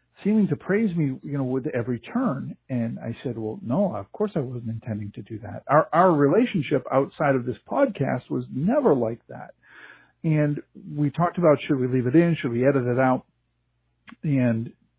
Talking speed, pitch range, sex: 190 wpm, 115-155 Hz, male